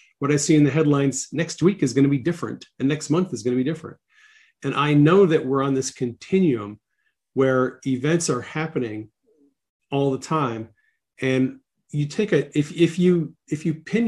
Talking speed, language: 195 wpm, English